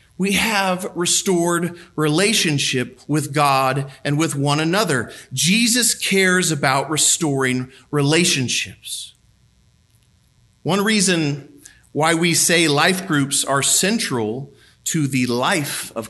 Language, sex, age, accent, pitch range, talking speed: English, male, 40-59, American, 125-185 Hz, 105 wpm